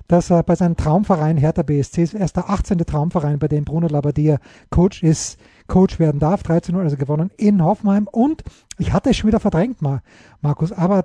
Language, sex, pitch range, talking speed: German, male, 155-195 Hz, 195 wpm